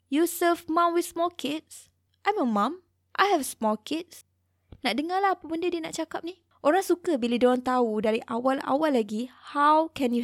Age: 20-39